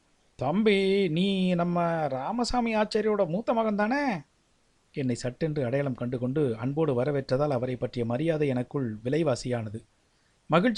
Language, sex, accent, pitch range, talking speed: Tamil, male, native, 135-215 Hz, 110 wpm